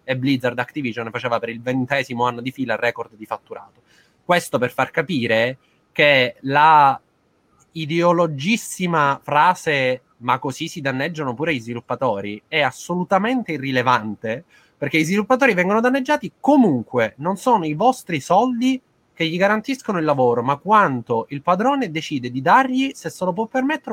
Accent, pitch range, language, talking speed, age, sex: native, 125-185 Hz, Italian, 150 wpm, 20-39, male